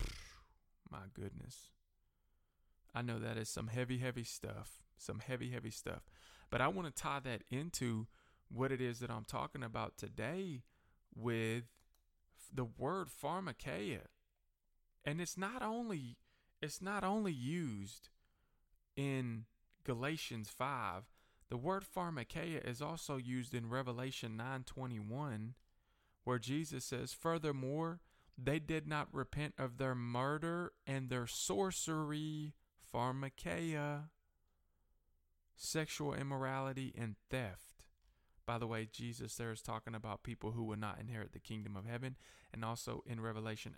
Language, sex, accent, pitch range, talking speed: English, male, American, 110-140 Hz, 130 wpm